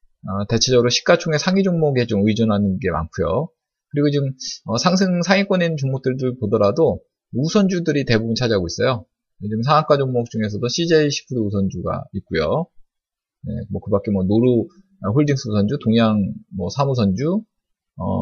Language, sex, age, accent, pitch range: Korean, male, 20-39, native, 105-155 Hz